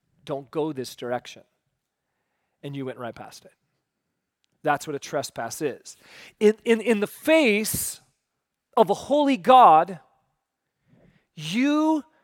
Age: 30-49